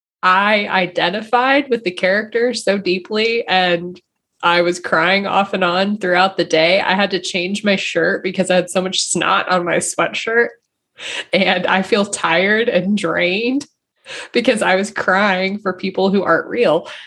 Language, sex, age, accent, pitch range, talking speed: English, female, 20-39, American, 175-230 Hz, 165 wpm